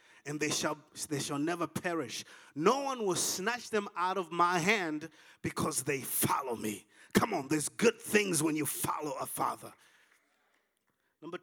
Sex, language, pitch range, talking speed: male, English, 145-190 Hz, 165 wpm